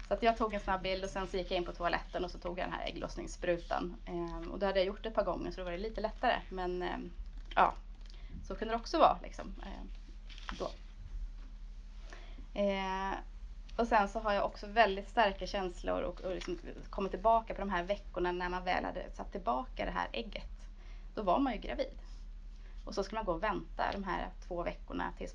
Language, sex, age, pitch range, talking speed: Swedish, female, 20-39, 185-225 Hz, 220 wpm